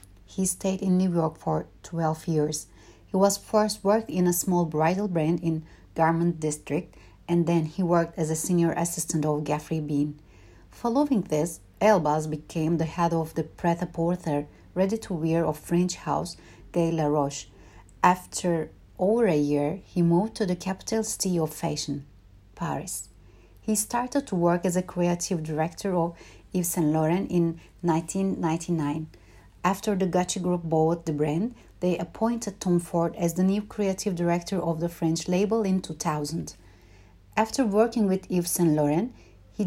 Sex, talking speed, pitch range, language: female, 155 wpm, 155-185 Hz, Turkish